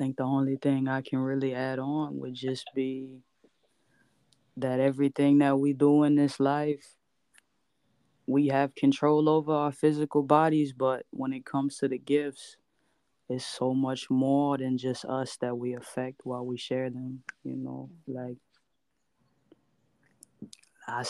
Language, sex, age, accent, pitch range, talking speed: English, female, 20-39, American, 130-150 Hz, 150 wpm